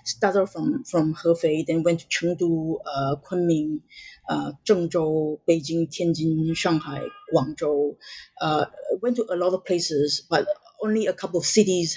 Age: 30-49